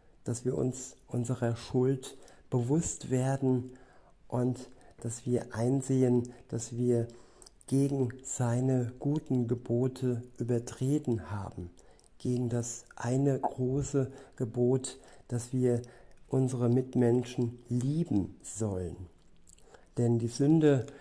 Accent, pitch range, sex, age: German, 120-130 Hz, male, 50-69